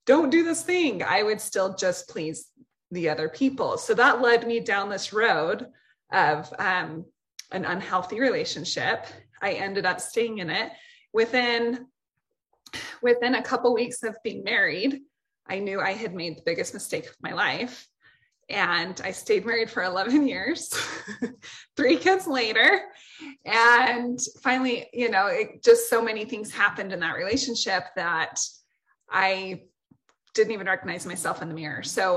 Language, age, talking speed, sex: English, 20-39, 155 wpm, female